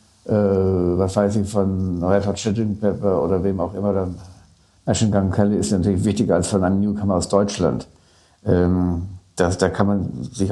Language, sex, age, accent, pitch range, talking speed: German, male, 60-79, German, 95-115 Hz, 160 wpm